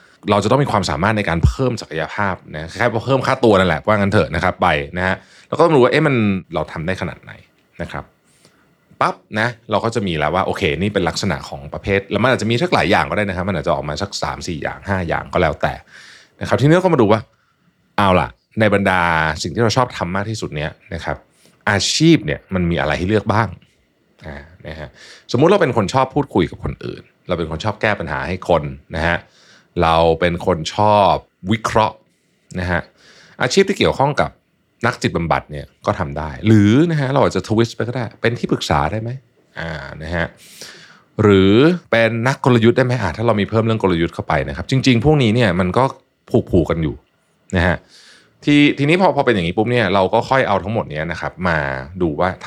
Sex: male